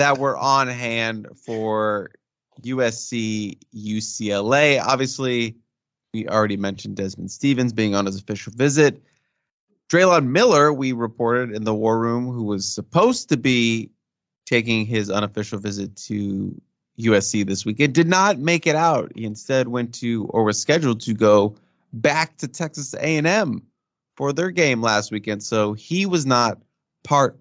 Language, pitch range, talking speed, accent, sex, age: English, 110-135 Hz, 145 wpm, American, male, 30-49